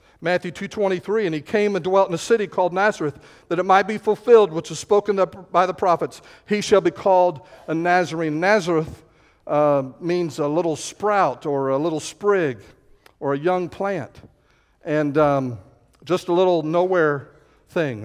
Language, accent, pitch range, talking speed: English, American, 130-175 Hz, 170 wpm